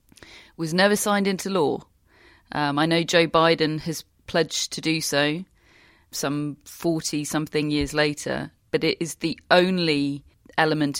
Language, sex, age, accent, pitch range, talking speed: English, female, 30-49, British, 145-175 Hz, 140 wpm